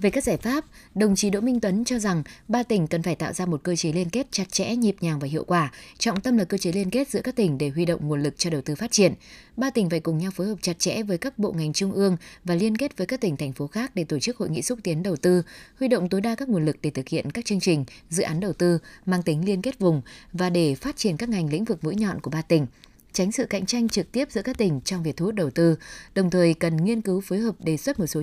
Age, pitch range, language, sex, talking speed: 20-39, 165-220 Hz, Vietnamese, female, 305 wpm